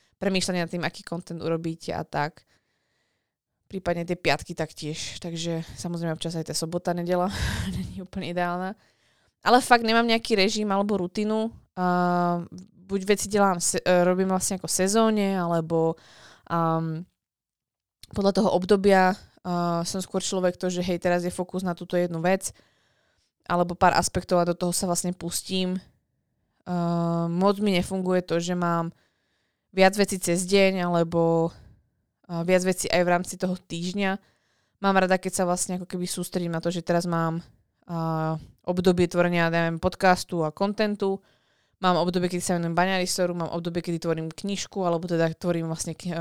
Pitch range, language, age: 170-190 Hz, Slovak, 20-39